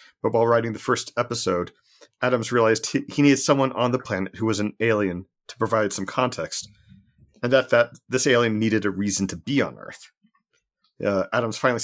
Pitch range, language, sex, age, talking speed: 100-120 Hz, English, male, 40-59, 195 wpm